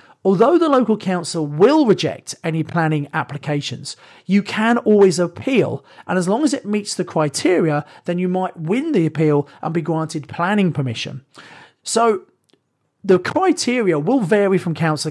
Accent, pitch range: British, 150-190 Hz